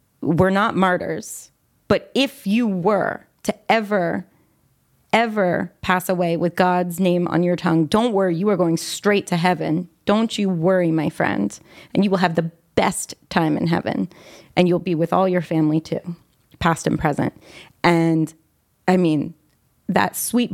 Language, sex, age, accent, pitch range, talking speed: English, female, 30-49, American, 165-195 Hz, 165 wpm